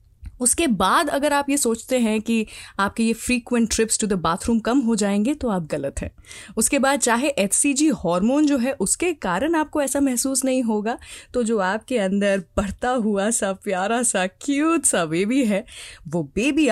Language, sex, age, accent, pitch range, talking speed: Hindi, female, 20-39, native, 200-290 Hz, 185 wpm